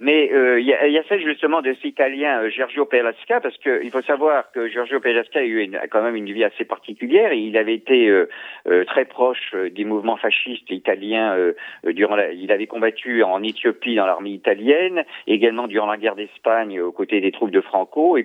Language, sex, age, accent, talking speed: Italian, male, 50-69, French, 205 wpm